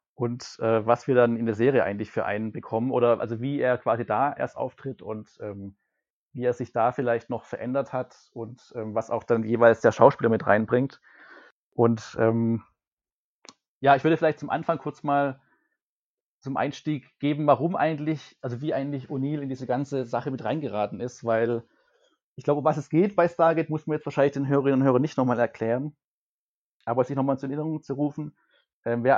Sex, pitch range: male, 120-145 Hz